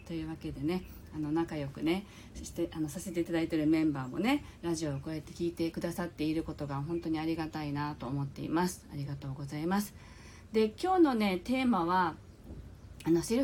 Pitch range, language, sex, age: 155-250 Hz, Japanese, female, 40-59